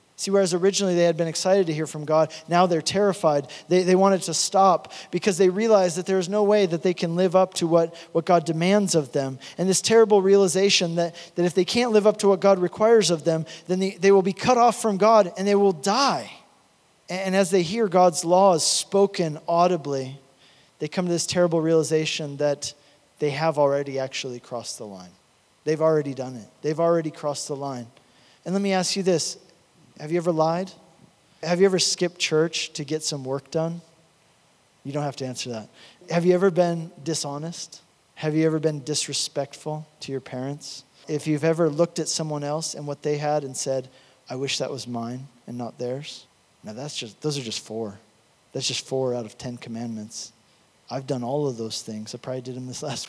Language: English